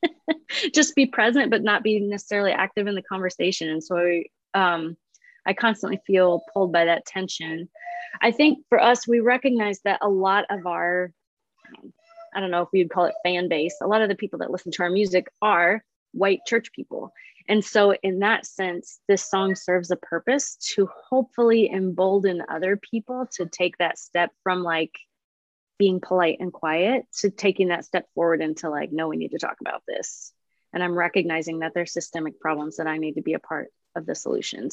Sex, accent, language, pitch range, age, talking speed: female, American, English, 175-220 Hz, 20-39, 190 wpm